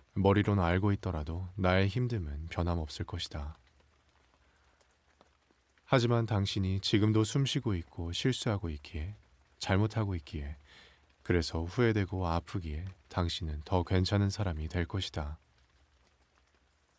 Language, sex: Korean, male